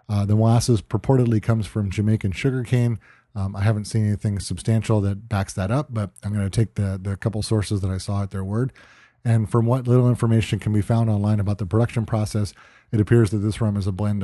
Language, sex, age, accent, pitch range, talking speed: English, male, 30-49, American, 100-115 Hz, 225 wpm